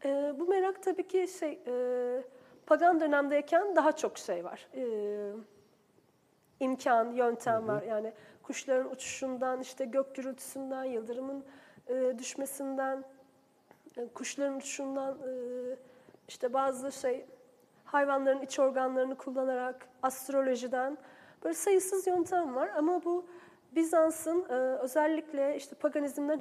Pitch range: 255-300 Hz